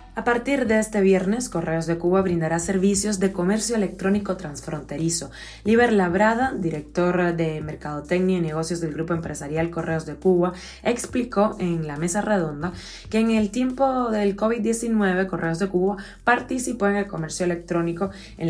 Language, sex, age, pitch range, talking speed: Spanish, female, 20-39, 165-205 Hz, 150 wpm